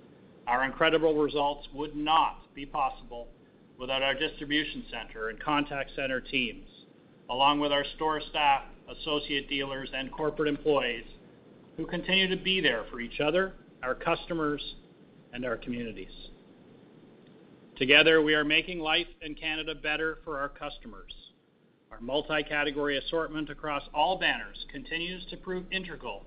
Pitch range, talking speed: 140-165 Hz, 135 wpm